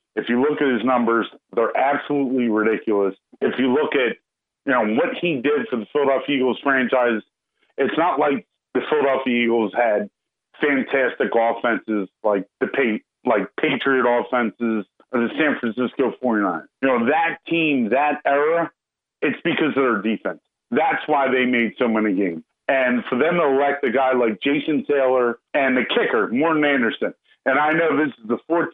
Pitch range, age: 120-145 Hz, 40-59